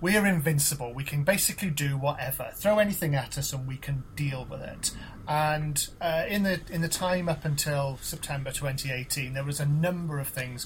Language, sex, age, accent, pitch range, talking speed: English, male, 30-49, British, 140-175 Hz, 195 wpm